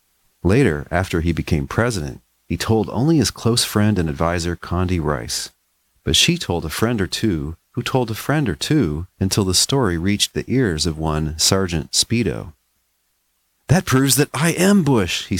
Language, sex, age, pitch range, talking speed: English, male, 40-59, 80-130 Hz, 175 wpm